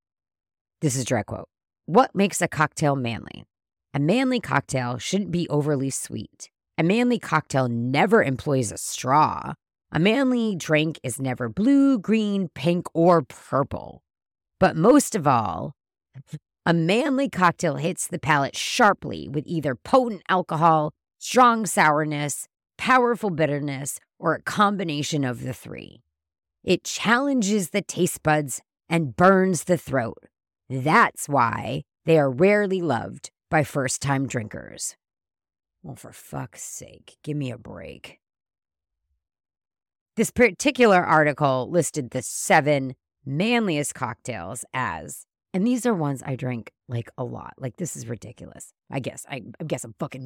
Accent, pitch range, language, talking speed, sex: American, 125-185 Hz, English, 135 wpm, female